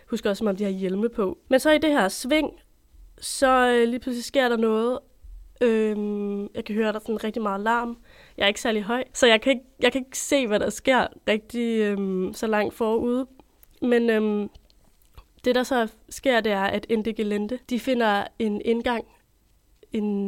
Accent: native